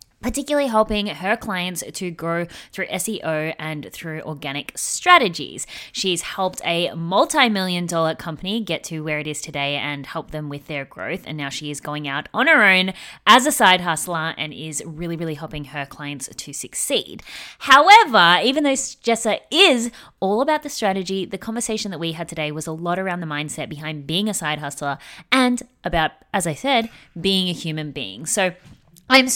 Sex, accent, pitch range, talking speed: female, Australian, 155-205 Hz, 180 wpm